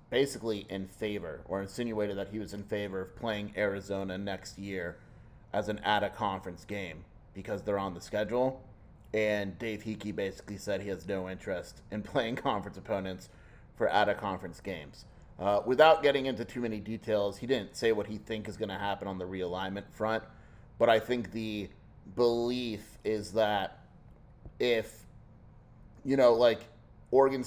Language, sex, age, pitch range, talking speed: English, male, 30-49, 100-115 Hz, 160 wpm